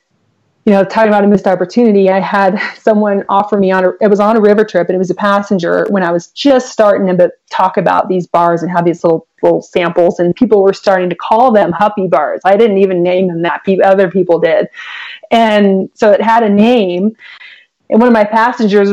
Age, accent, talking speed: 30-49, American, 220 wpm